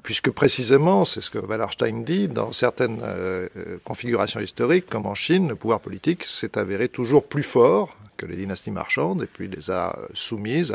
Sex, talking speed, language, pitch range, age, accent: male, 180 wpm, French, 110-160 Hz, 50-69, French